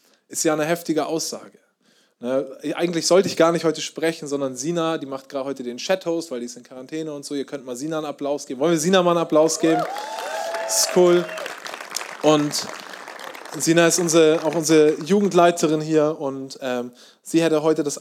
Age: 20-39